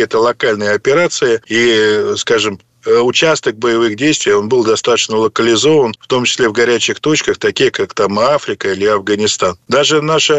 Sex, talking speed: male, 150 wpm